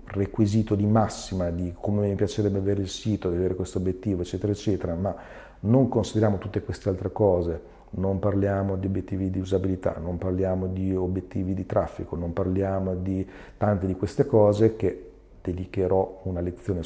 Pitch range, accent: 95-105 Hz, native